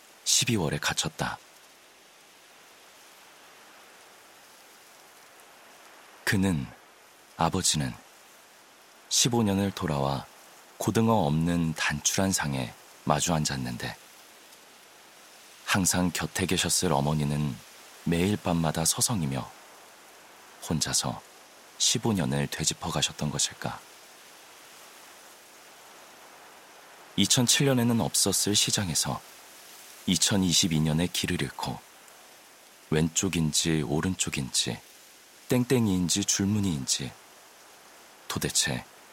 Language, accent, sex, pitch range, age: Korean, native, male, 75-100 Hz, 40-59